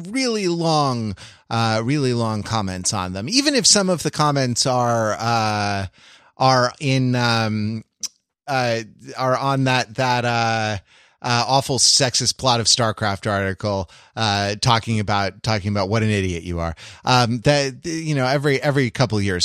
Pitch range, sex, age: 105-150 Hz, male, 30-49